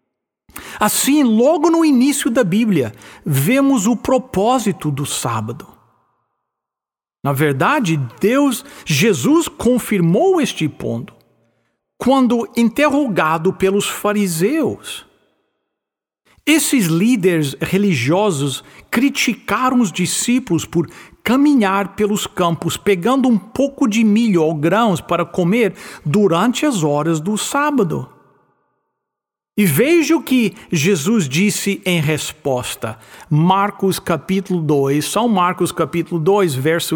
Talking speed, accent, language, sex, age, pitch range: 100 wpm, Brazilian, English, male, 60-79, 160-245 Hz